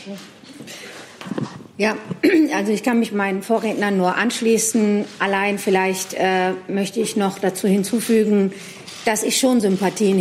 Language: German